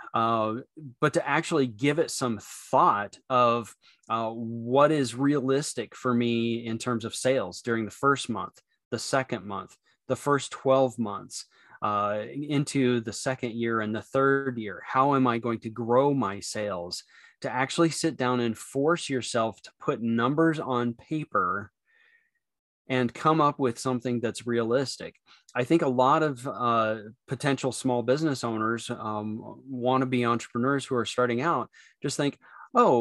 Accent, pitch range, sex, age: American, 115-140 Hz, male, 20-39